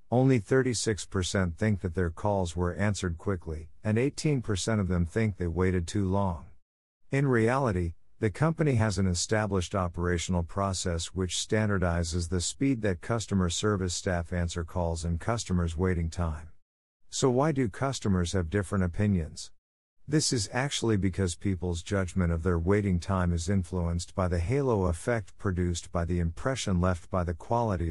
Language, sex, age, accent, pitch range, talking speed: English, male, 50-69, American, 85-110 Hz, 155 wpm